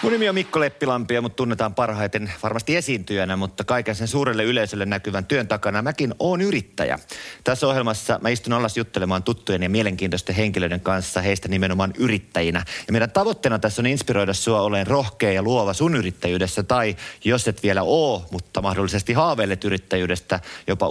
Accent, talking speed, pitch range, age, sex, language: native, 165 wpm, 95-120 Hz, 30-49, male, Finnish